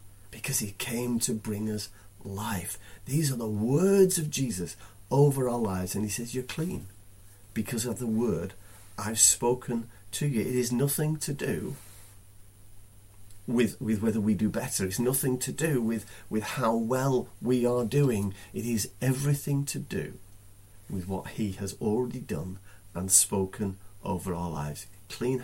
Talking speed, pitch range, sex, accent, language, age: 160 wpm, 100-140 Hz, male, British, English, 40-59